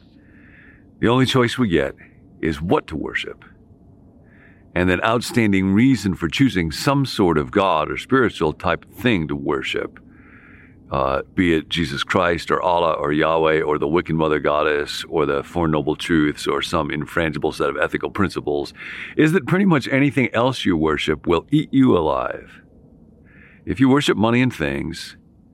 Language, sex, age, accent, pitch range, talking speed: English, male, 50-69, American, 80-110 Hz, 160 wpm